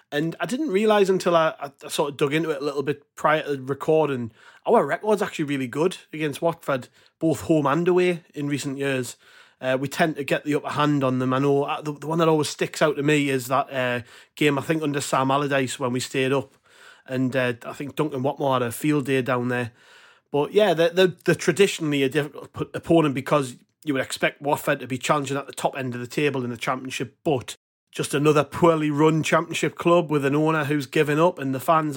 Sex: male